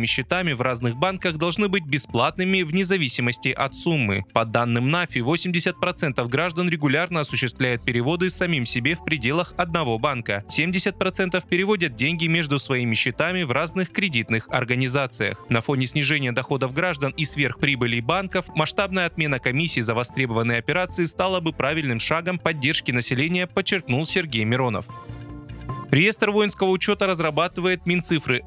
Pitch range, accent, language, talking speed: 125-180 Hz, native, Russian, 135 wpm